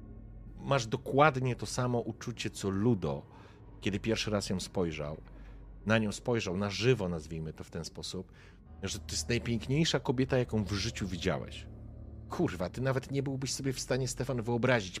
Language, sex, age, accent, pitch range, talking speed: Polish, male, 40-59, native, 95-120 Hz, 165 wpm